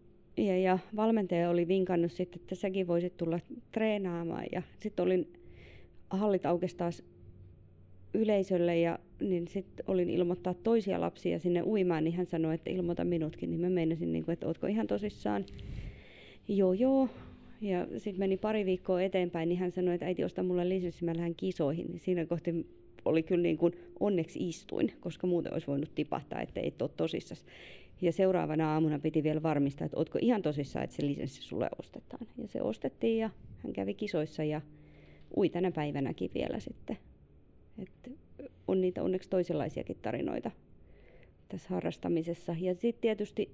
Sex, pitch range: female, 160-185 Hz